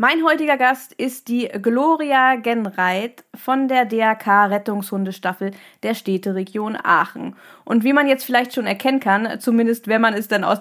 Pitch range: 195-240 Hz